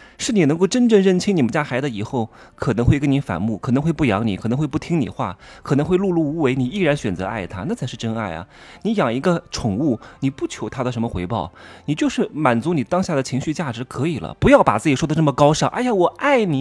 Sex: male